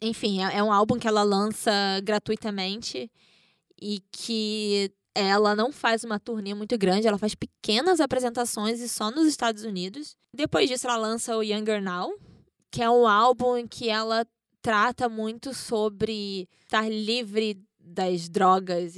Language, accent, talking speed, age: Portuguese, Brazilian, 150 wpm, 10-29